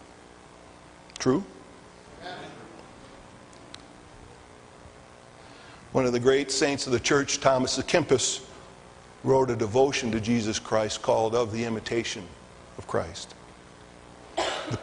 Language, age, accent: English, 50-69, American